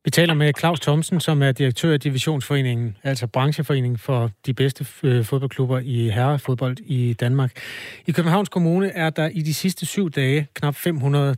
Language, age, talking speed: Danish, 30-49, 170 wpm